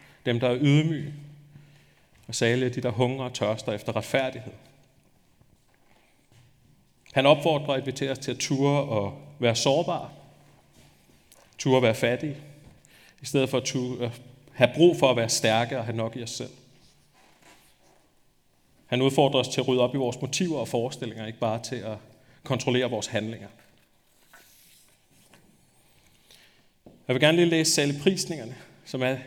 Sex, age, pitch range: male, 30-49, 120-140 Hz